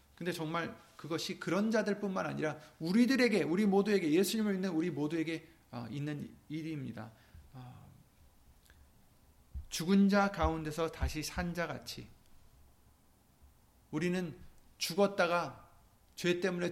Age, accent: 40-59, native